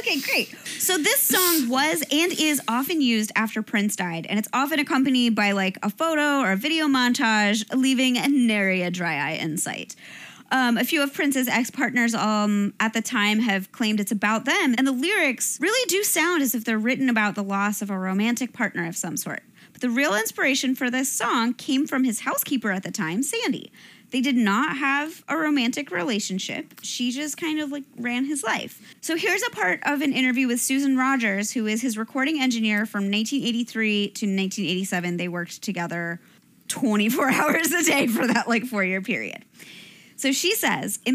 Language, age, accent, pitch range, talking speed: English, 20-39, American, 210-280 Hz, 195 wpm